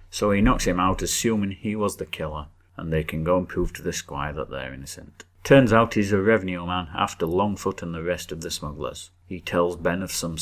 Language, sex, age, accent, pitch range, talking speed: English, male, 30-49, British, 85-110 Hz, 235 wpm